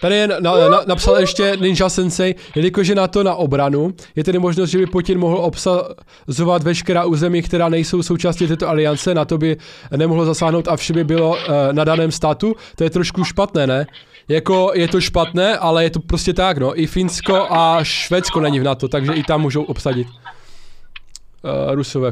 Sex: male